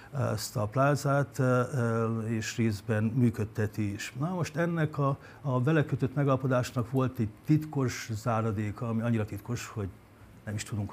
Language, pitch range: Hungarian, 115-135 Hz